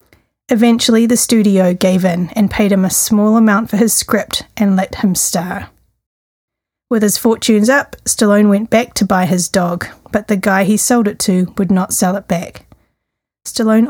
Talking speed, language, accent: 180 wpm, English, Australian